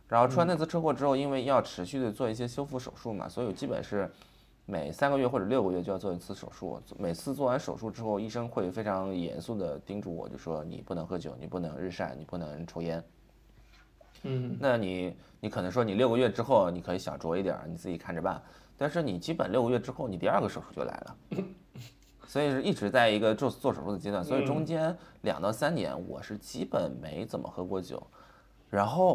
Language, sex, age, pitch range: Chinese, male, 20-39, 90-130 Hz